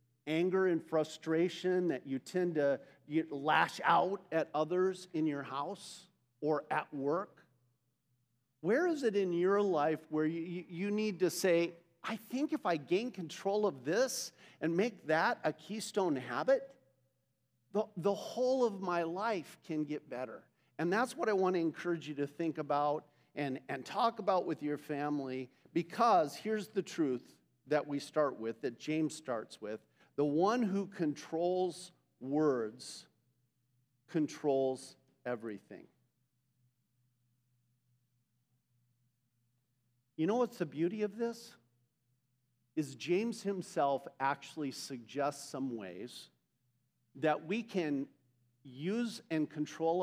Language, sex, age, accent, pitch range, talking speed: English, male, 50-69, American, 130-180 Hz, 125 wpm